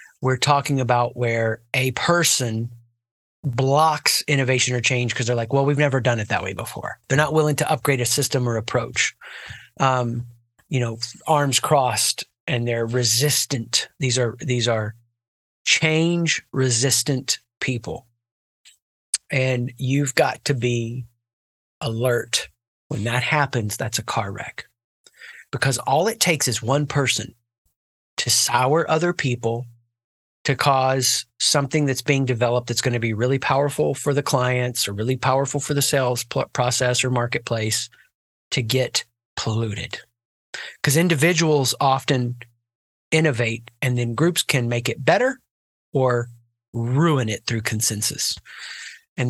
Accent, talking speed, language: American, 140 wpm, English